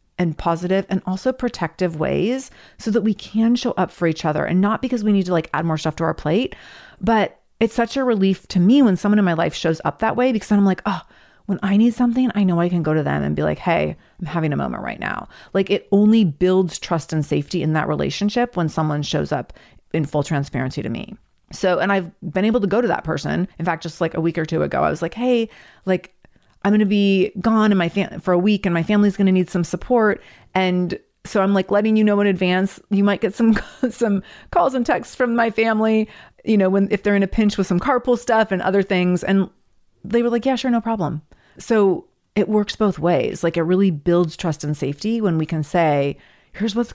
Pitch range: 170-220 Hz